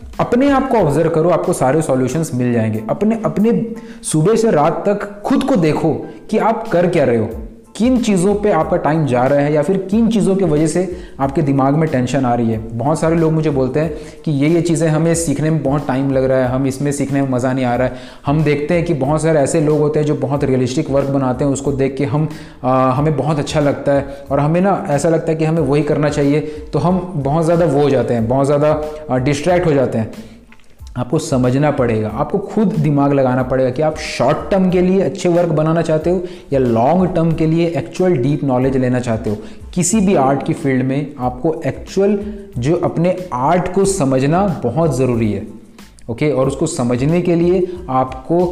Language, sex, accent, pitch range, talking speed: Hindi, male, native, 130-175 Hz, 220 wpm